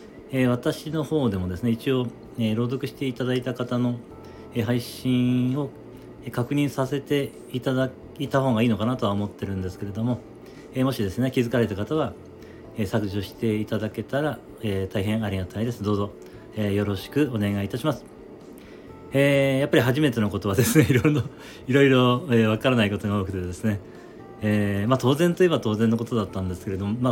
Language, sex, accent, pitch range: Japanese, male, native, 100-125 Hz